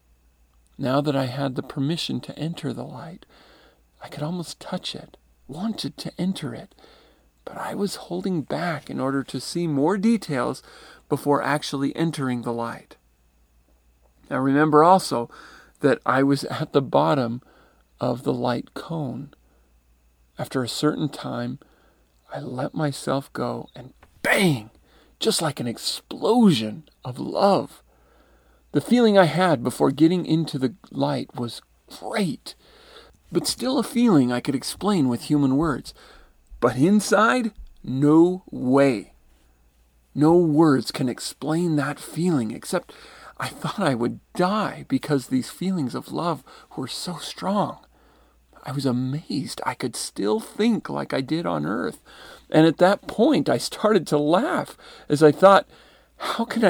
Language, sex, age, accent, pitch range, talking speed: English, male, 40-59, American, 120-175 Hz, 140 wpm